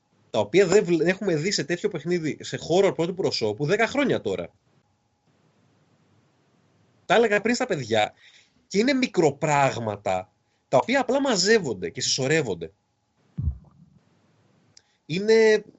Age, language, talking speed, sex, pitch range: 30-49, Greek, 115 wpm, male, 135-225 Hz